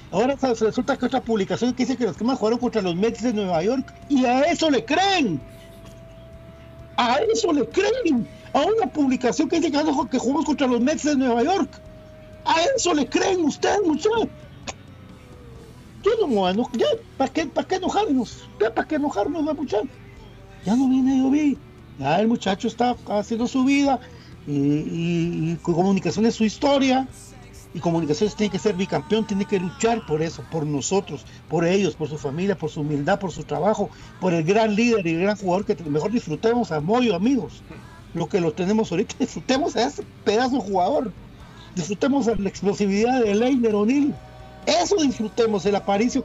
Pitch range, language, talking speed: 190-255 Hz, Spanish, 190 wpm